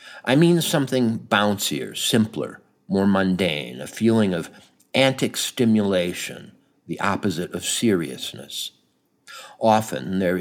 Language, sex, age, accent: English, male, 50-69, American